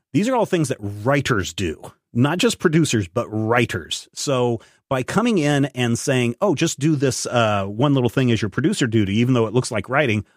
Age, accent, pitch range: 40-59, American, 105-140 Hz